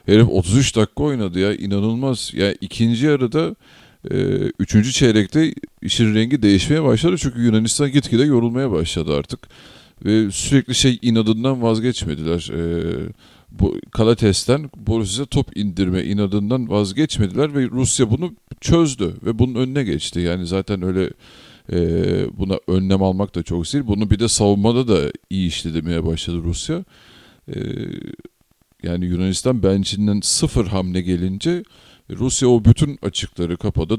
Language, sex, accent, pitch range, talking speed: Turkish, male, native, 95-120 Hz, 130 wpm